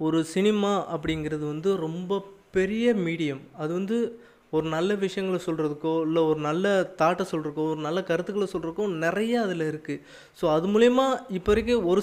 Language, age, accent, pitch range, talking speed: Tamil, 20-39, native, 155-195 Hz, 155 wpm